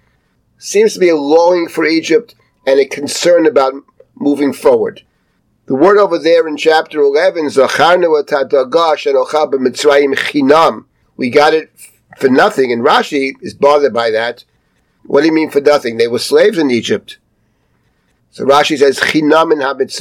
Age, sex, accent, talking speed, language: 50-69, male, American, 135 wpm, English